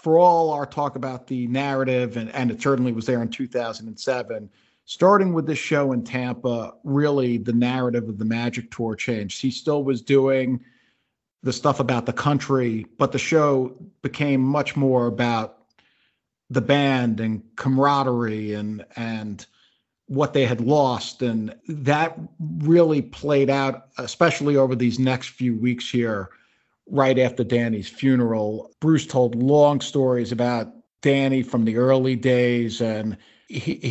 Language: English